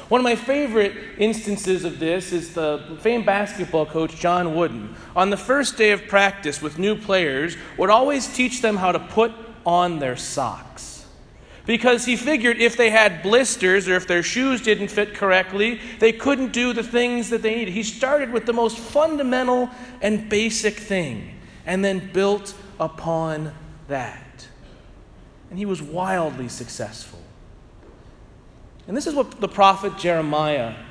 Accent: American